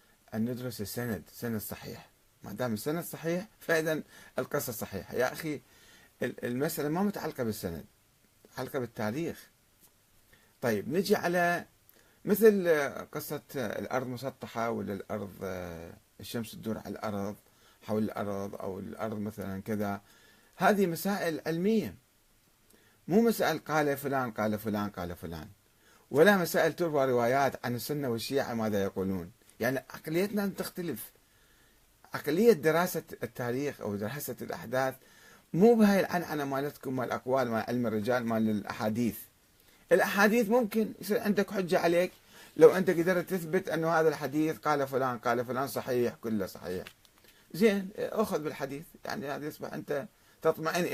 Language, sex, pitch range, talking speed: Arabic, male, 110-165 Hz, 130 wpm